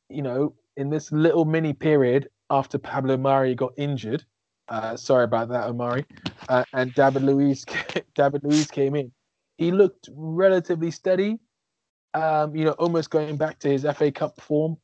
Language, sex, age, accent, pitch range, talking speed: English, male, 20-39, British, 120-145 Hz, 160 wpm